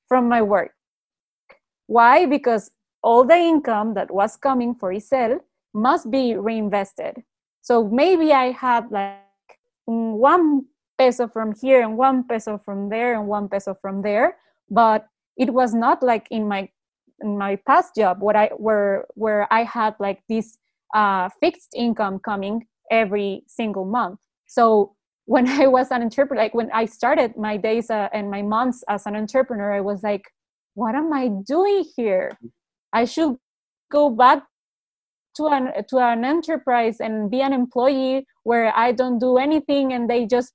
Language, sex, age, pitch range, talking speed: English, female, 20-39, 210-255 Hz, 160 wpm